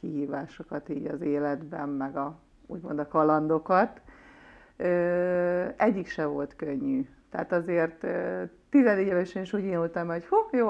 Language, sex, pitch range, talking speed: Hungarian, female, 155-195 Hz, 135 wpm